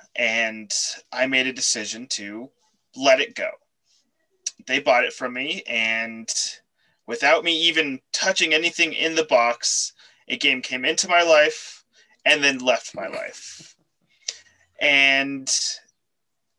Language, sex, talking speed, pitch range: English, male, 125 wpm, 125-170 Hz